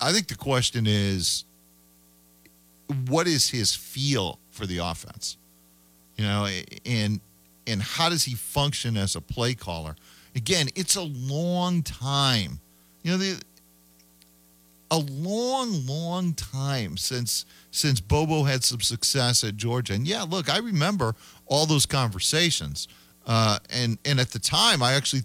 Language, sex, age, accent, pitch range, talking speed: English, male, 40-59, American, 95-145 Hz, 145 wpm